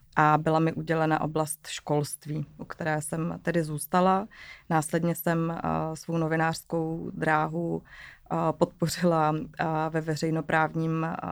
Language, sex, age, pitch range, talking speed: Czech, female, 20-39, 155-165 Hz, 100 wpm